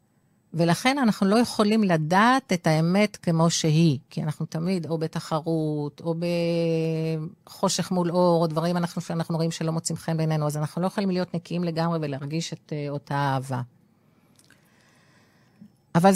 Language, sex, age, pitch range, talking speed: Hebrew, female, 40-59, 150-185 Hz, 145 wpm